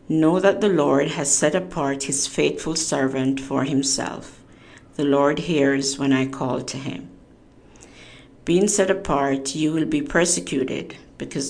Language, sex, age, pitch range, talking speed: English, female, 50-69, 135-150 Hz, 145 wpm